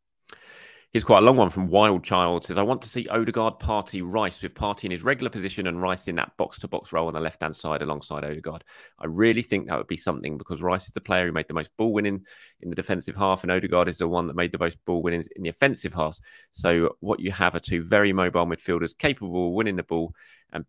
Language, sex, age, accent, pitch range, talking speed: English, male, 30-49, British, 80-95 Hz, 250 wpm